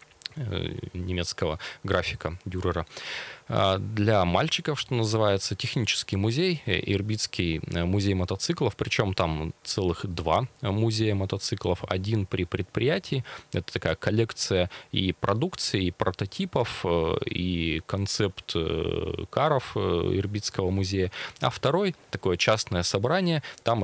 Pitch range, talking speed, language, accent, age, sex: 90-110 Hz, 100 wpm, Russian, native, 20-39, male